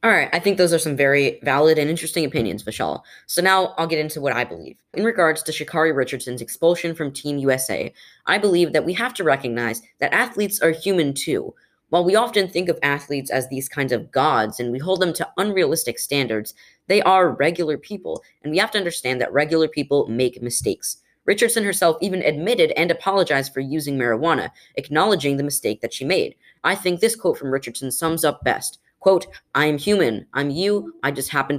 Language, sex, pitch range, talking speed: English, female, 130-175 Hz, 200 wpm